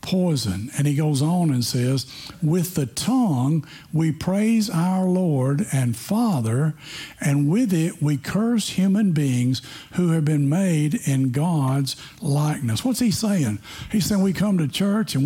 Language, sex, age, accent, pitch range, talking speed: English, male, 60-79, American, 150-195 Hz, 155 wpm